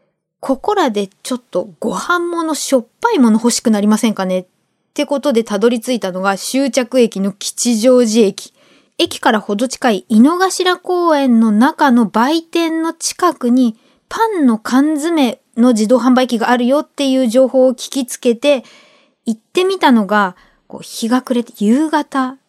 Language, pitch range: Japanese, 230-325 Hz